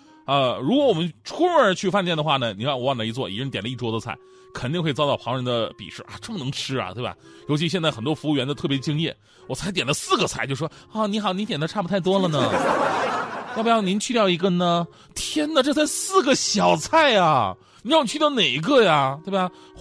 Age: 30-49